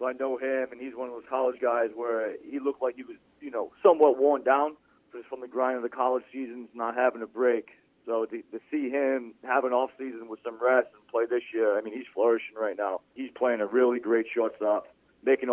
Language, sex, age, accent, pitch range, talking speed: English, male, 40-59, American, 115-130 Hz, 235 wpm